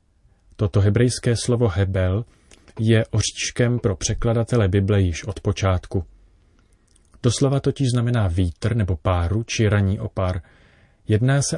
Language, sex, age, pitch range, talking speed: Czech, male, 30-49, 95-120 Hz, 125 wpm